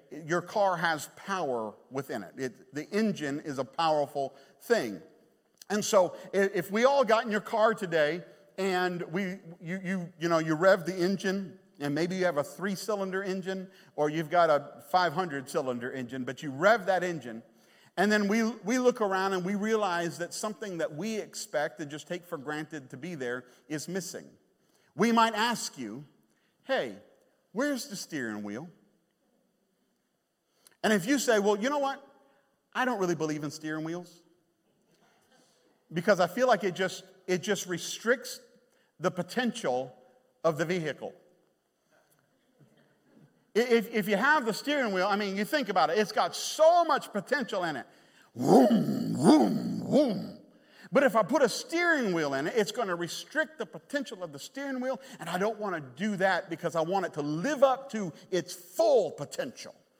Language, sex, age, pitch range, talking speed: English, male, 50-69, 165-220 Hz, 170 wpm